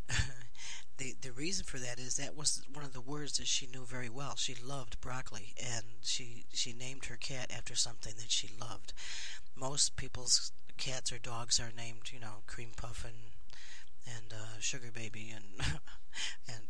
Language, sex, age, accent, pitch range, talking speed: English, male, 40-59, American, 115-135 Hz, 175 wpm